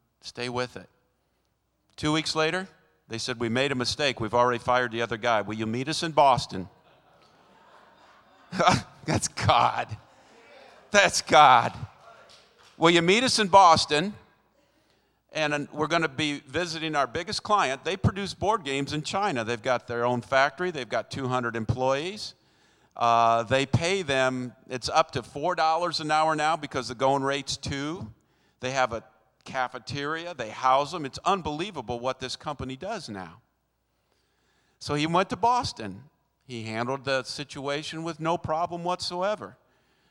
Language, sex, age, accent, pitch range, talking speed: English, male, 50-69, American, 120-155 Hz, 150 wpm